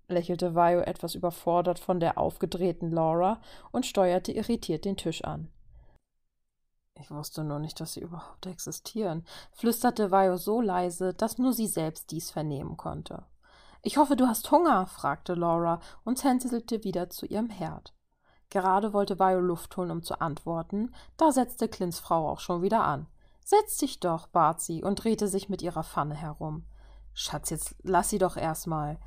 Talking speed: 165 wpm